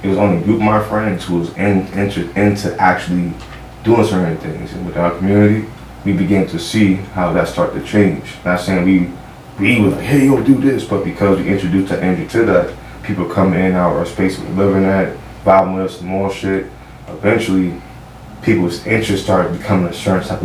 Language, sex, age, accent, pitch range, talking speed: English, male, 20-39, American, 90-100 Hz, 195 wpm